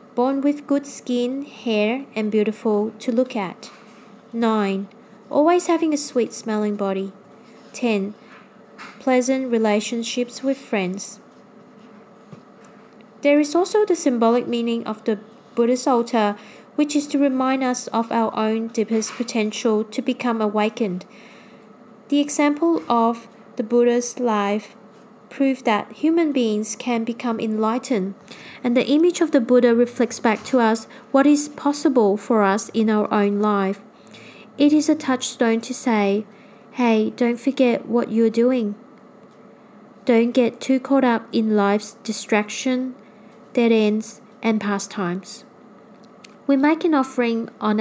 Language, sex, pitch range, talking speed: English, female, 215-255 Hz, 130 wpm